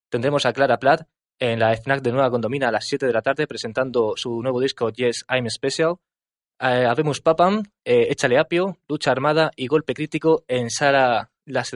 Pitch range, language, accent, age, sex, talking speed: 120-155 Hz, Spanish, Spanish, 20-39, male, 190 wpm